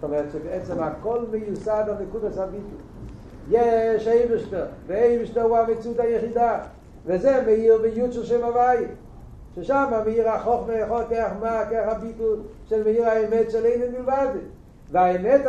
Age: 60-79